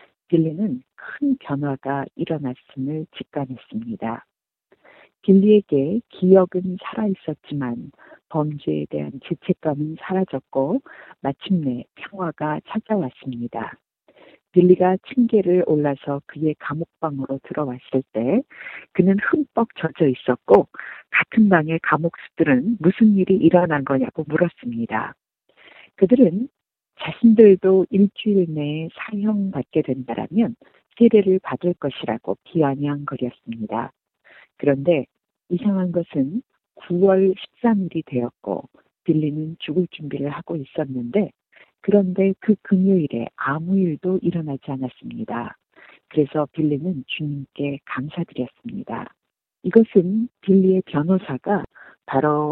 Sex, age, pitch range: female, 40-59, 140-195 Hz